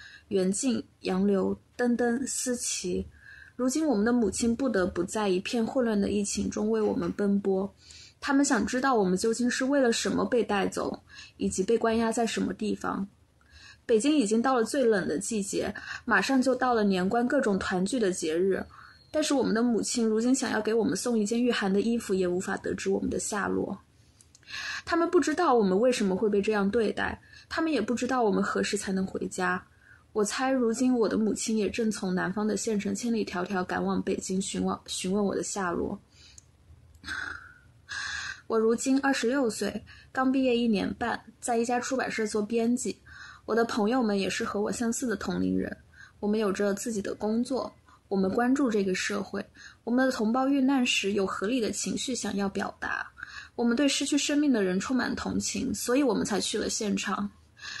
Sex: female